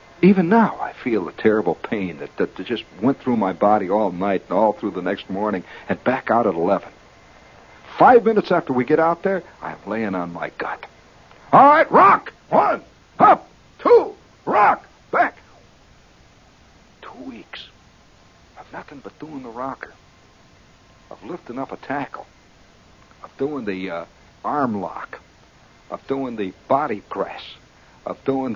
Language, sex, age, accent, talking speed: English, male, 60-79, American, 155 wpm